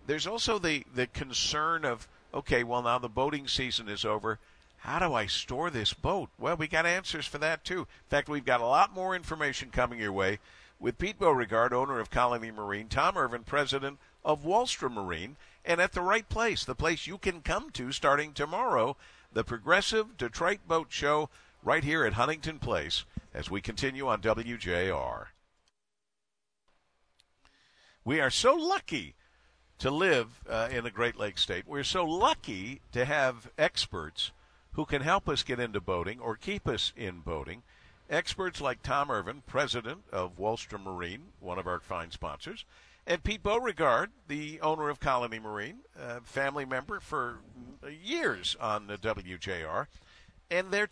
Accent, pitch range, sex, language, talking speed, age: American, 105-155 Hz, male, English, 165 wpm, 50-69